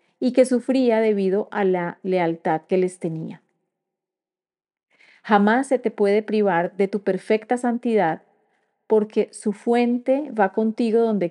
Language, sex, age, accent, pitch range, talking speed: Spanish, female, 30-49, Colombian, 185-235 Hz, 135 wpm